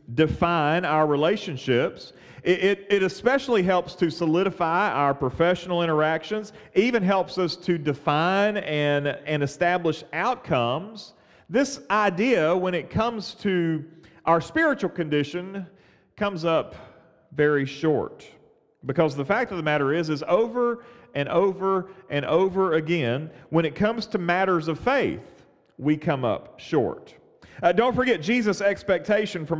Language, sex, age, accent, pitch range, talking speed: English, male, 40-59, American, 160-210 Hz, 135 wpm